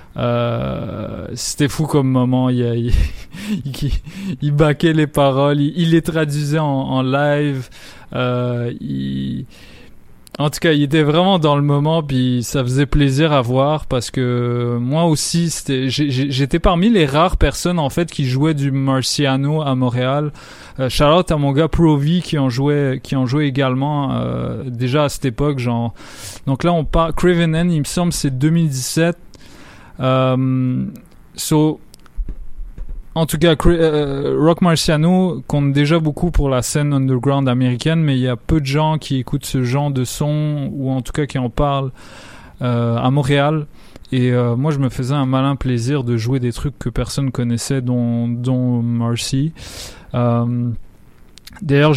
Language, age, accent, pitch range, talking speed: French, 20-39, French, 125-150 Hz, 165 wpm